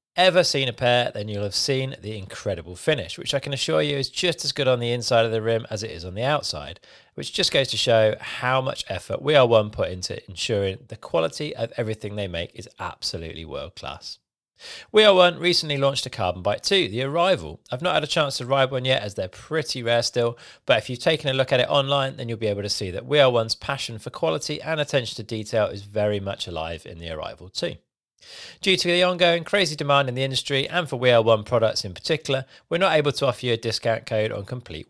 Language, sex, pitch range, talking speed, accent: English, male, 110-145 Hz, 245 wpm, British